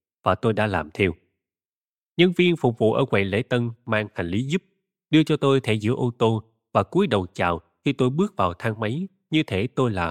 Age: 20-39